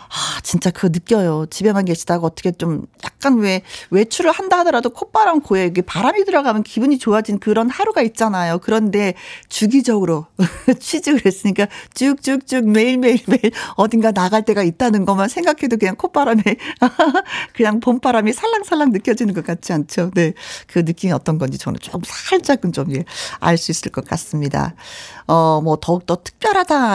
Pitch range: 180-275 Hz